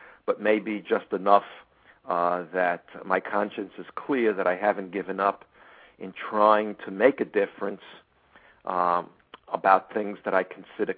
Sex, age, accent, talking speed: male, 50-69, American, 150 wpm